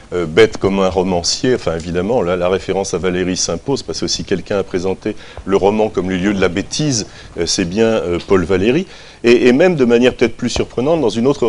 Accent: French